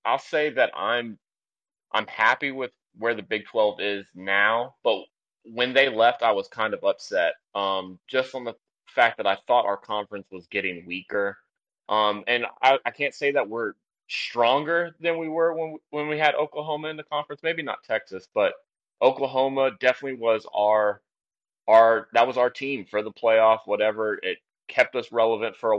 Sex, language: male, English